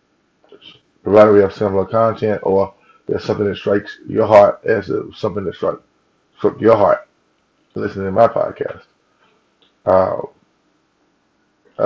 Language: English